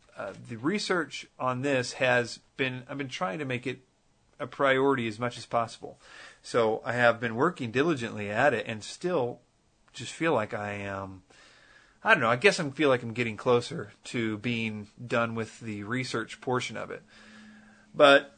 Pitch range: 115-150 Hz